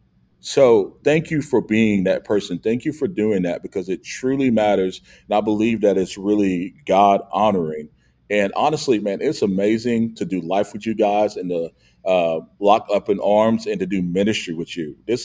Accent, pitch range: American, 90-110 Hz